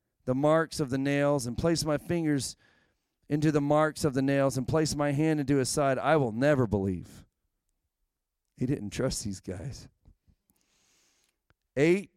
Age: 40-59